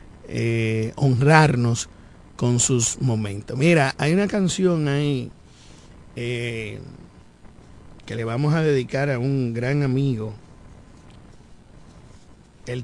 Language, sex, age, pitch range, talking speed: Spanish, male, 50-69, 115-150 Hz, 100 wpm